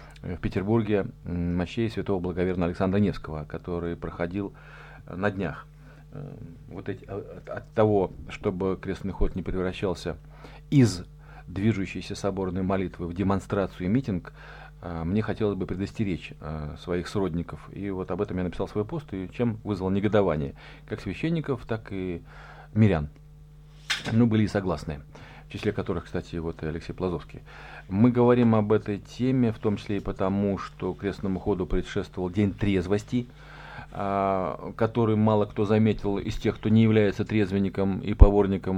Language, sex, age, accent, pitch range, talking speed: Russian, male, 40-59, native, 90-110 Hz, 140 wpm